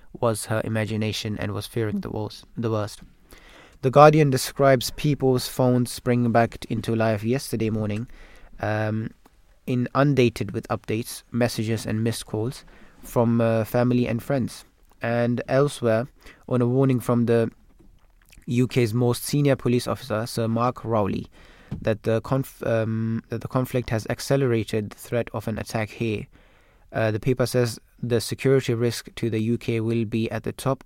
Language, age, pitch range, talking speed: English, 20-39, 110-125 Hz, 150 wpm